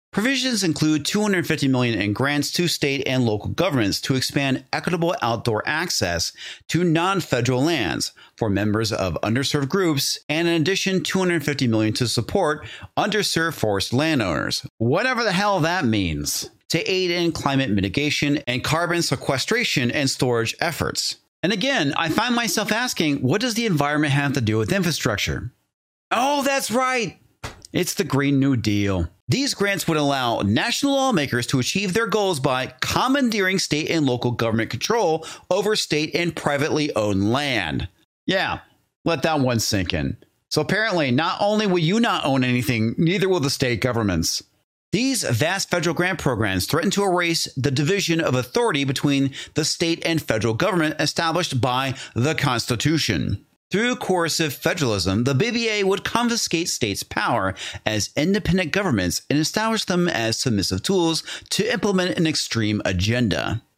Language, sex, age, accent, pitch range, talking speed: English, male, 40-59, American, 120-180 Hz, 150 wpm